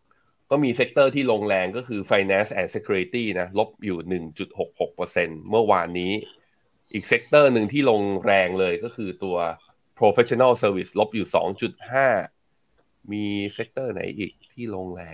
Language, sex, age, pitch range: Thai, male, 20-39, 95-115 Hz